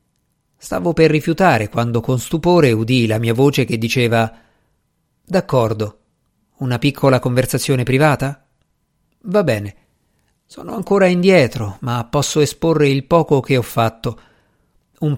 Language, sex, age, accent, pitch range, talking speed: Italian, male, 50-69, native, 120-170 Hz, 125 wpm